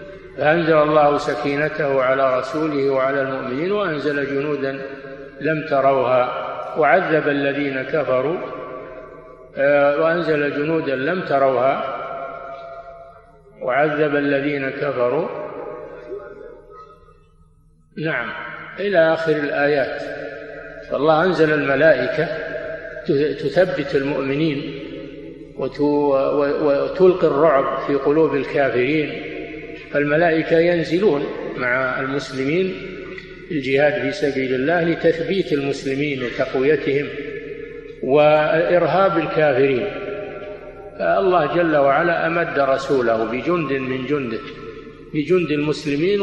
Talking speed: 75 wpm